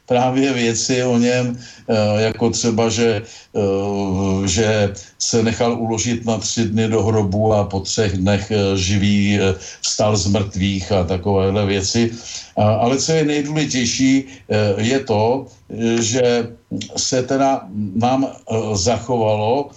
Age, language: 50-69, Slovak